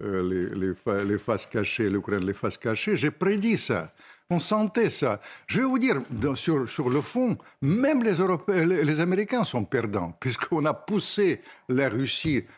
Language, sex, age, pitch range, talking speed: French, male, 60-79, 110-175 Hz, 175 wpm